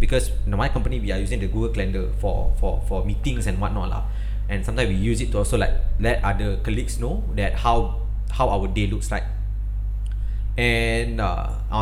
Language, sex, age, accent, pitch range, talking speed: English, male, 20-39, Malaysian, 100-115 Hz, 195 wpm